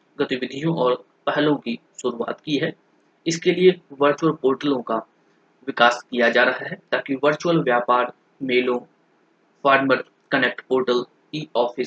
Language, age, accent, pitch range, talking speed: Hindi, 20-39, native, 125-145 Hz, 60 wpm